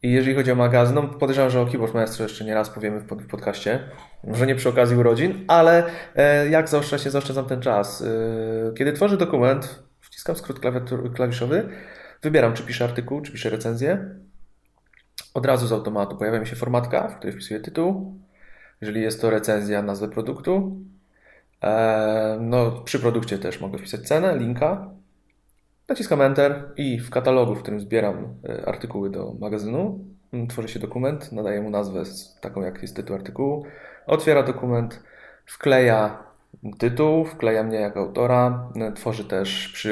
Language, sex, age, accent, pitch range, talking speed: Polish, male, 20-39, native, 105-135 Hz, 150 wpm